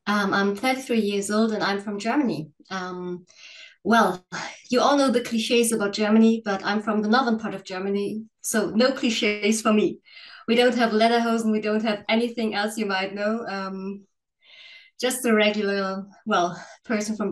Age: 20-39